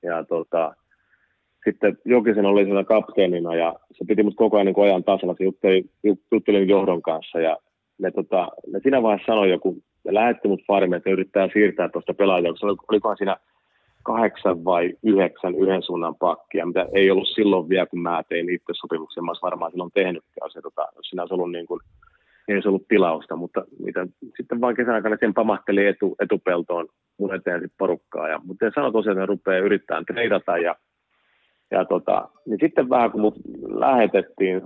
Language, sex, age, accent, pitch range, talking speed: Finnish, male, 30-49, native, 90-105 Hz, 180 wpm